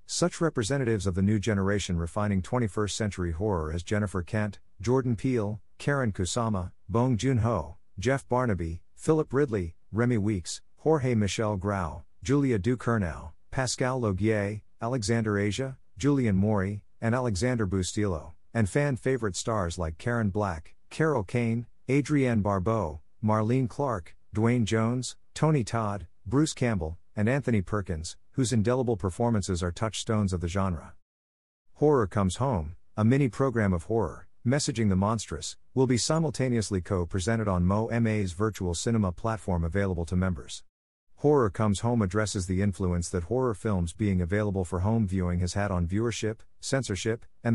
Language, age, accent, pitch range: English, 50-69, American, 90-120 Hz